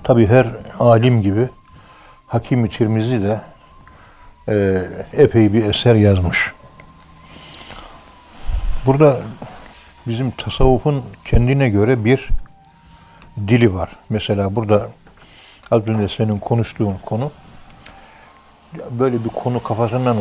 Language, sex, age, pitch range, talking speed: Turkish, male, 60-79, 105-125 Hz, 85 wpm